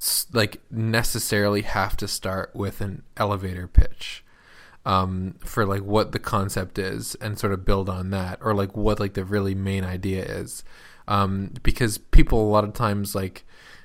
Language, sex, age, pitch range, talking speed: English, male, 20-39, 100-115 Hz, 170 wpm